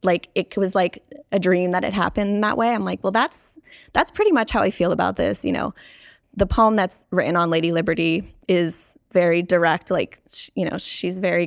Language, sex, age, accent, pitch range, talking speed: English, female, 20-39, American, 170-195 Hz, 210 wpm